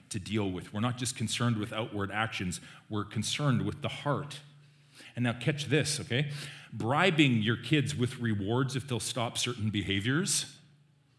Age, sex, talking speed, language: 40-59, male, 160 wpm, English